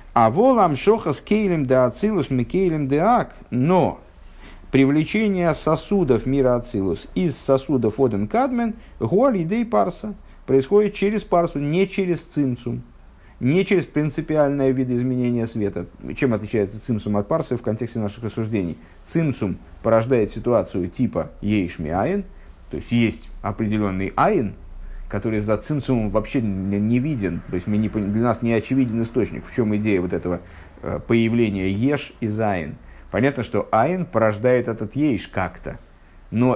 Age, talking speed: 50-69, 130 wpm